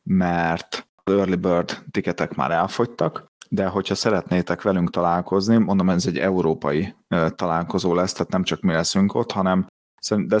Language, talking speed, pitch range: Hungarian, 150 wpm, 85-100 Hz